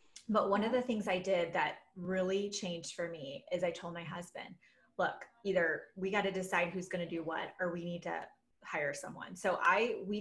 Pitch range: 180-245 Hz